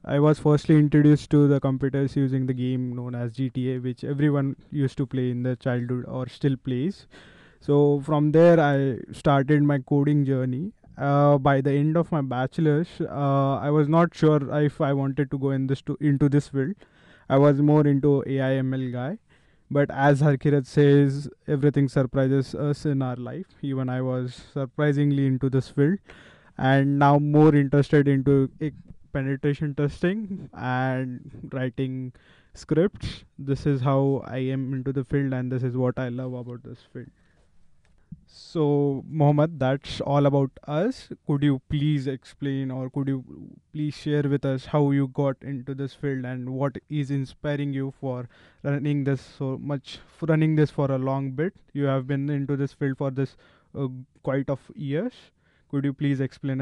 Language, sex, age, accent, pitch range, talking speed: English, male, 20-39, Indian, 130-145 Hz, 175 wpm